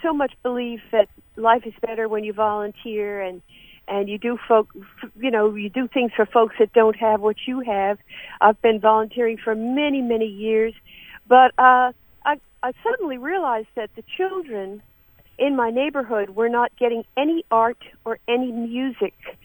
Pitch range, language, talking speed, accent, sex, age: 215-270 Hz, English, 170 wpm, American, female, 50-69